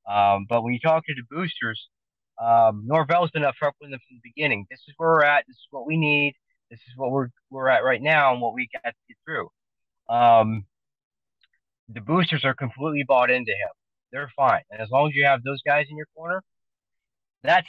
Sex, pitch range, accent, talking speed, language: male, 110-145 Hz, American, 220 wpm, English